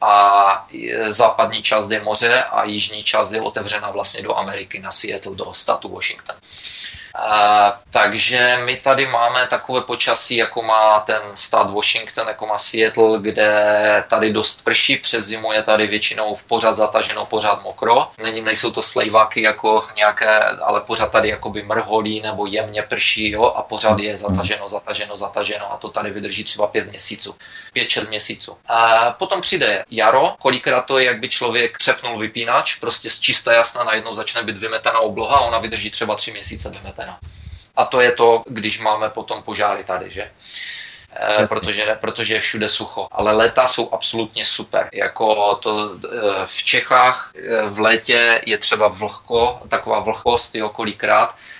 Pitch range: 105-115 Hz